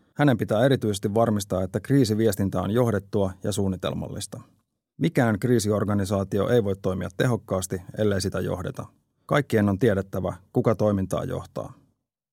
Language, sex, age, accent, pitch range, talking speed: Finnish, male, 30-49, native, 95-120 Hz, 120 wpm